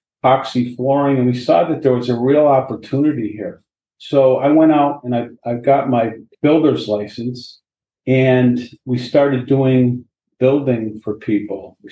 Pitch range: 110-130 Hz